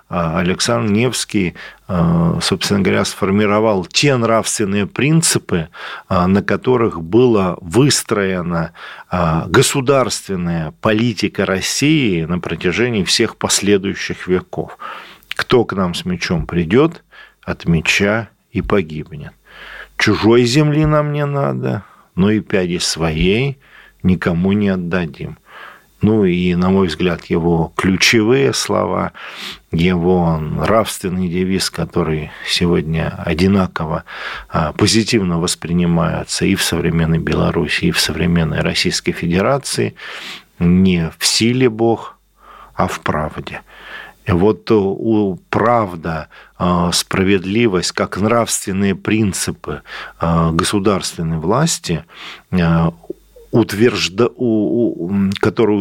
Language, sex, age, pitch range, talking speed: Russian, male, 50-69, 85-110 Hz, 95 wpm